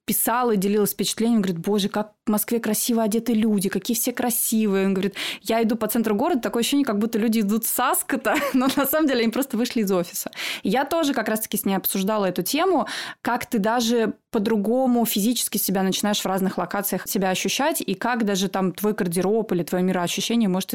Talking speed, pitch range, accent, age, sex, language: 205 wpm, 190-240 Hz, native, 20-39, female, Russian